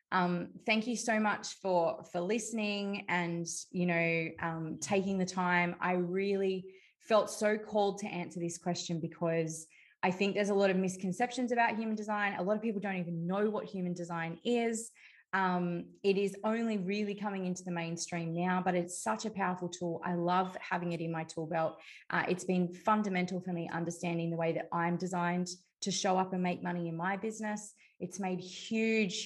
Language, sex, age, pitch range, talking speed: English, female, 20-39, 170-200 Hz, 195 wpm